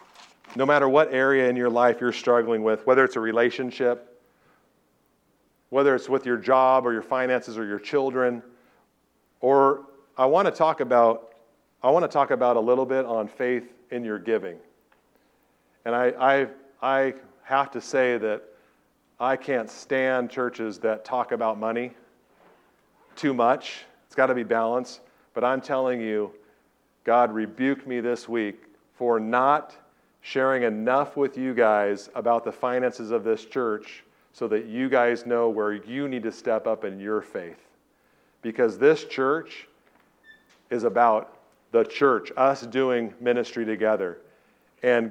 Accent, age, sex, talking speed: American, 40-59, male, 150 wpm